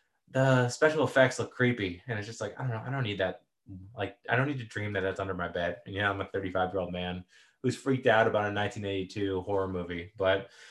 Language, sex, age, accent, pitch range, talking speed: English, male, 20-39, American, 120-155 Hz, 260 wpm